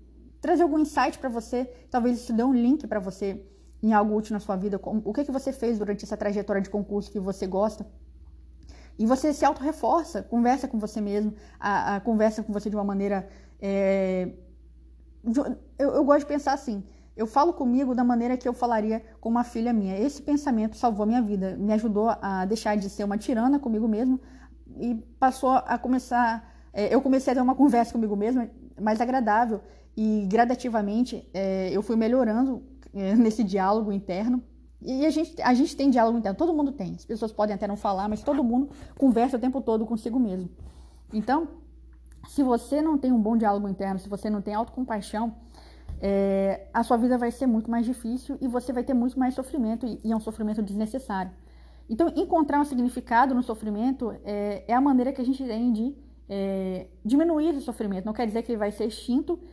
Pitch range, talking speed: 205-255 Hz, 200 wpm